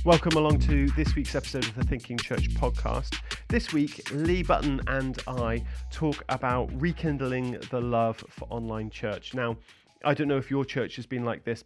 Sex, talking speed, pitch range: male, 185 wpm, 115-135 Hz